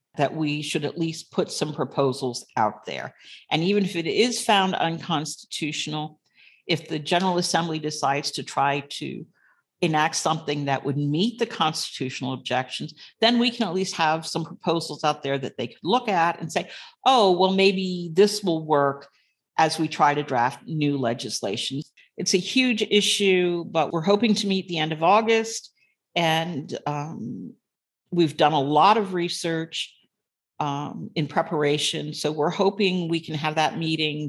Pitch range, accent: 145-175 Hz, American